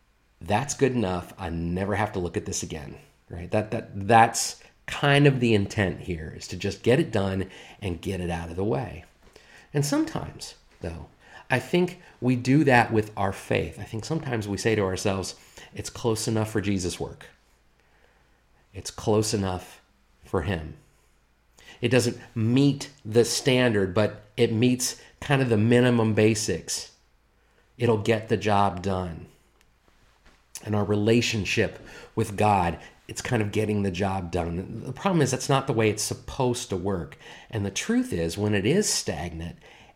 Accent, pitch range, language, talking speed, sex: American, 95-120 Hz, English, 165 wpm, male